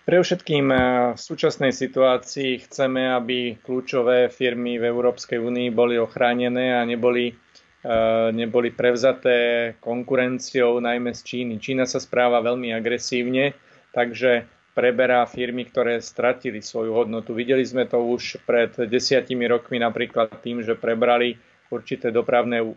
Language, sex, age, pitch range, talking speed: Slovak, male, 30-49, 120-130 Hz, 125 wpm